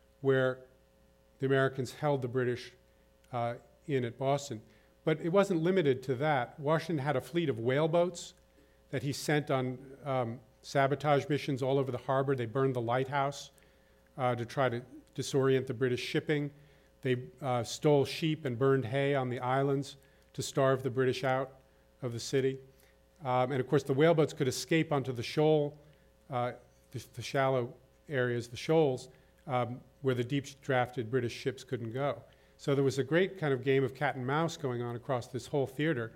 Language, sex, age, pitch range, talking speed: English, male, 40-59, 125-140 Hz, 180 wpm